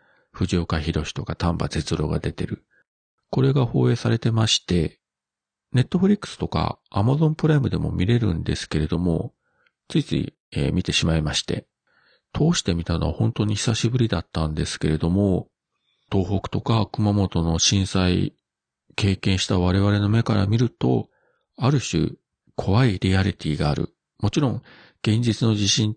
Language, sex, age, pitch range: Japanese, male, 40-59, 85-115 Hz